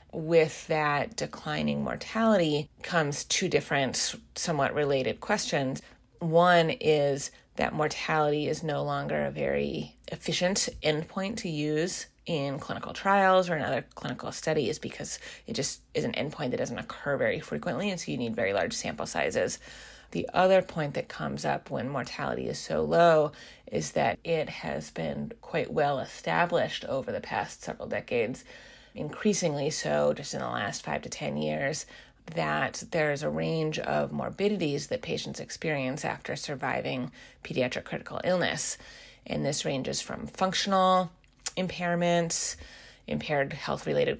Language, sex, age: English, female, 30-49